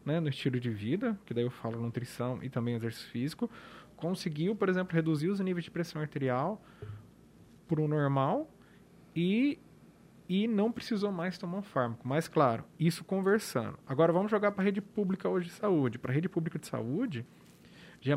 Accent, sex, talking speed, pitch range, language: Brazilian, male, 180 wpm, 135-190 Hz, Portuguese